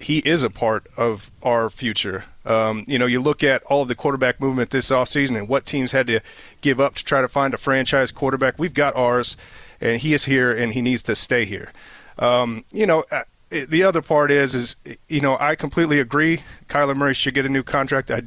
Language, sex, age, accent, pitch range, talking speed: English, male, 30-49, American, 120-145 Hz, 225 wpm